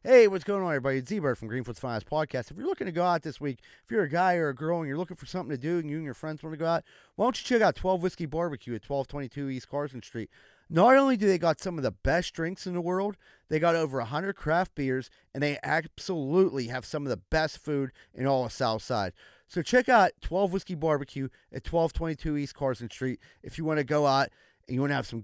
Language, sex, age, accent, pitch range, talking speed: English, male, 30-49, American, 135-185 Hz, 260 wpm